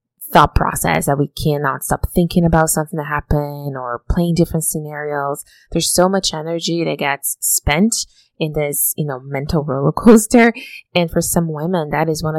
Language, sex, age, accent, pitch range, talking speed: English, female, 20-39, American, 140-175 Hz, 175 wpm